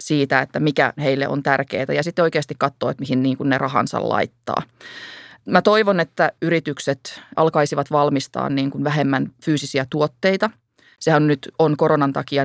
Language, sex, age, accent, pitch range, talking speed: Finnish, female, 30-49, native, 135-155 Hz, 140 wpm